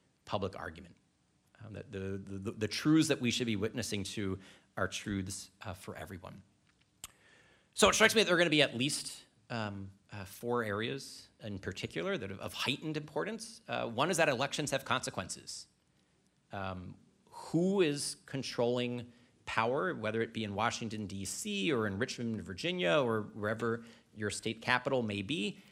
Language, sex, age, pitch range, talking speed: English, male, 40-59, 100-135 Hz, 160 wpm